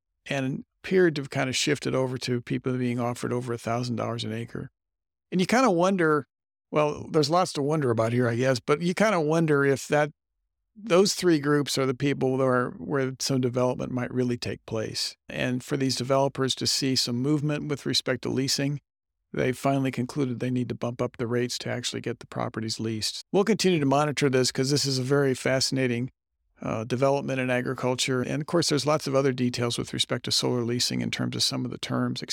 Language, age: English, 50-69